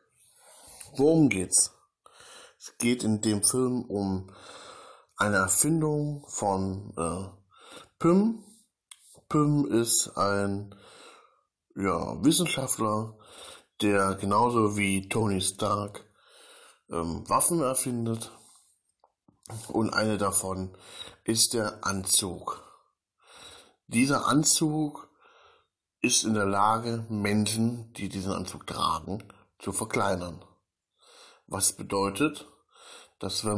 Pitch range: 100-115 Hz